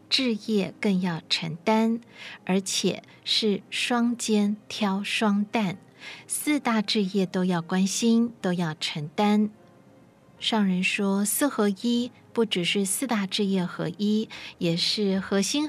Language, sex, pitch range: Chinese, female, 185-225 Hz